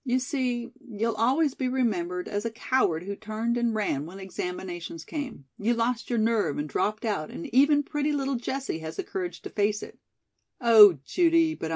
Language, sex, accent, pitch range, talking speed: English, female, American, 185-270 Hz, 190 wpm